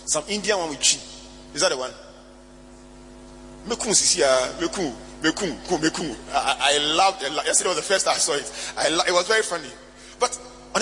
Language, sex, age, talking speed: English, male, 30-49, 155 wpm